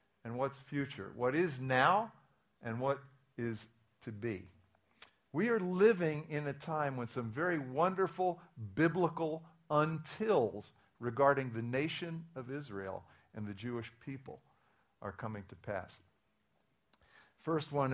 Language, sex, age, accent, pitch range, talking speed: English, male, 50-69, American, 105-145 Hz, 125 wpm